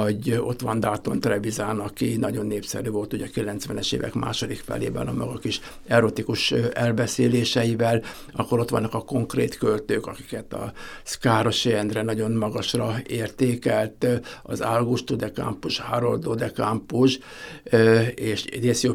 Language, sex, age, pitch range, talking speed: Portuguese, male, 60-79, 110-125 Hz, 125 wpm